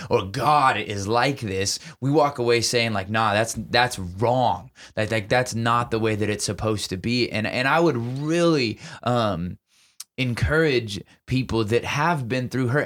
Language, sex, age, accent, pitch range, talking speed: English, male, 20-39, American, 105-125 Hz, 175 wpm